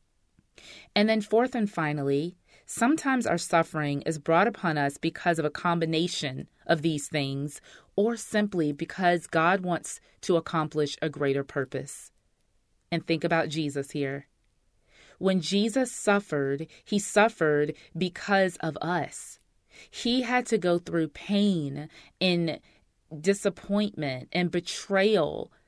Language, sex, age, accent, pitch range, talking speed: English, female, 30-49, American, 150-205 Hz, 120 wpm